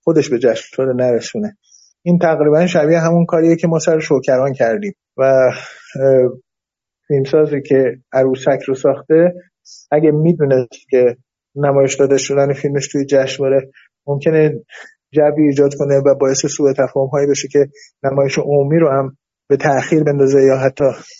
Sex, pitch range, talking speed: male, 140-170 Hz, 135 wpm